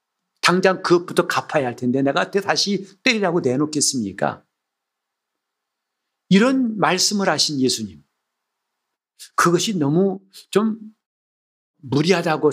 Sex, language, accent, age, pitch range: male, Korean, native, 50-69, 135-200 Hz